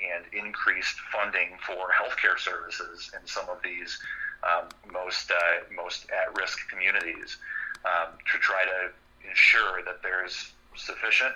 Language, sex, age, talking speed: English, male, 30-49, 125 wpm